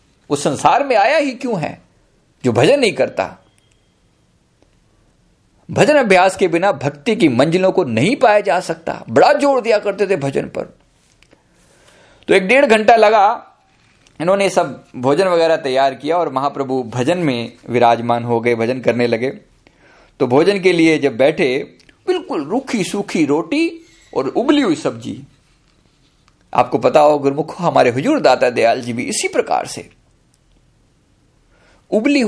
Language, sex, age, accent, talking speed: Hindi, male, 50-69, native, 145 wpm